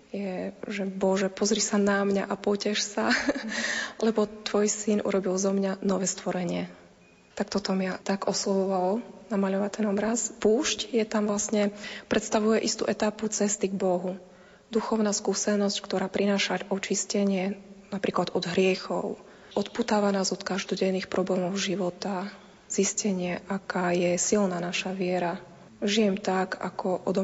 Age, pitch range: 20-39, 190-215 Hz